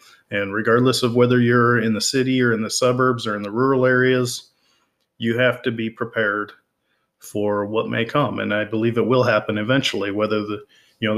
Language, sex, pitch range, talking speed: English, male, 115-130 Hz, 200 wpm